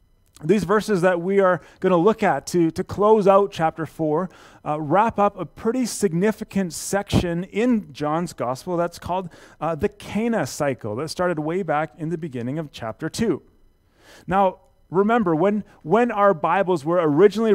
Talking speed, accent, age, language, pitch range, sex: 165 wpm, American, 30-49, English, 155-190 Hz, male